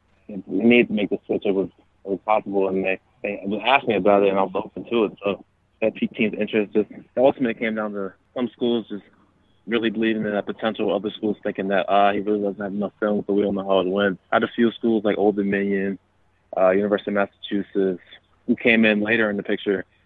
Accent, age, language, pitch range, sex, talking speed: American, 20-39, English, 95-105 Hz, male, 235 wpm